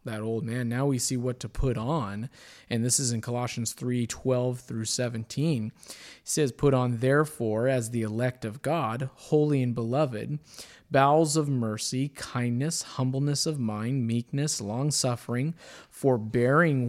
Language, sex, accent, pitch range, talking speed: English, male, American, 115-145 Hz, 155 wpm